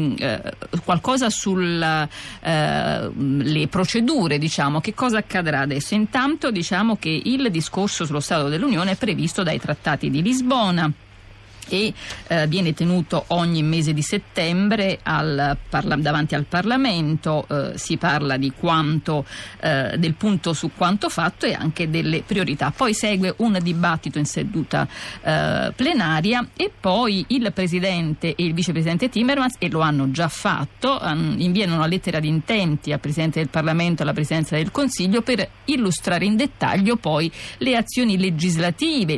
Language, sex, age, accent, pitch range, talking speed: Italian, female, 50-69, native, 155-205 Hz, 140 wpm